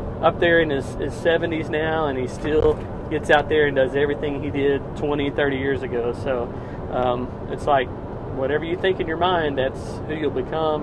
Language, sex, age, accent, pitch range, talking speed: English, male, 40-59, American, 135-165 Hz, 195 wpm